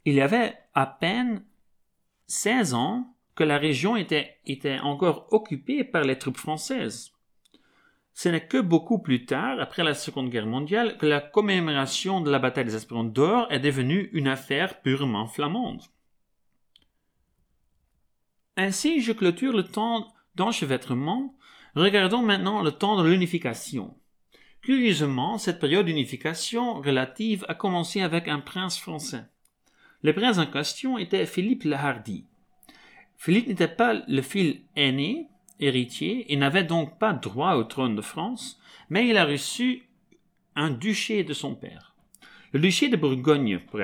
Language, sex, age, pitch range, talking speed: Dutch, male, 40-59, 140-215 Hz, 145 wpm